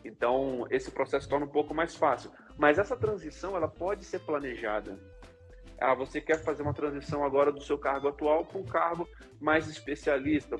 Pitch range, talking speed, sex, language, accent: 135-170 Hz, 175 wpm, male, English, Brazilian